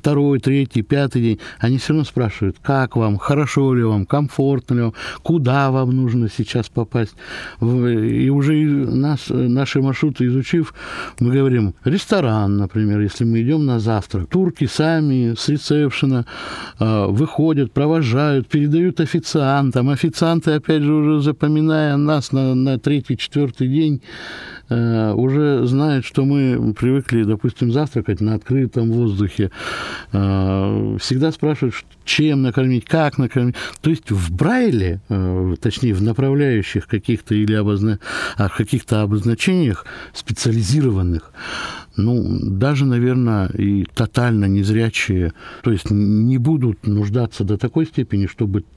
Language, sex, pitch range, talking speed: Russian, male, 105-140 Hz, 120 wpm